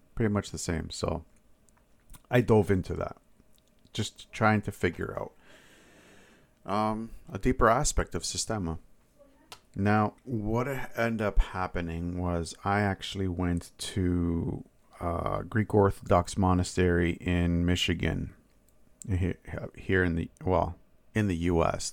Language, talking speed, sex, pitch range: English, 120 wpm, male, 85-105 Hz